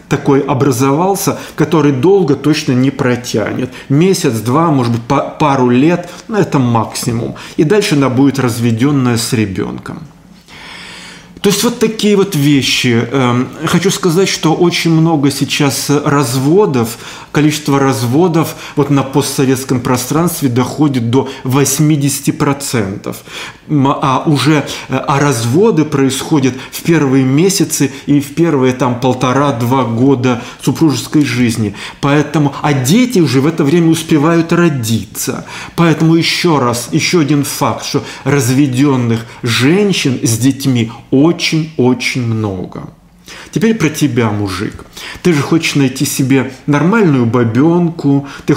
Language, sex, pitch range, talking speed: Russian, male, 130-160 Hz, 120 wpm